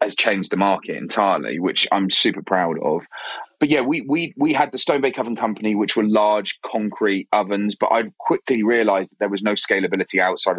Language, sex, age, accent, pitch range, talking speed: English, male, 30-49, British, 100-125 Hz, 200 wpm